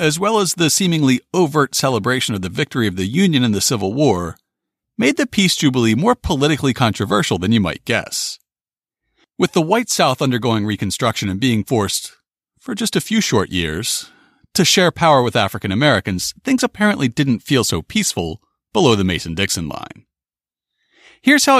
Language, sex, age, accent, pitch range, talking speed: English, male, 40-59, American, 100-165 Hz, 170 wpm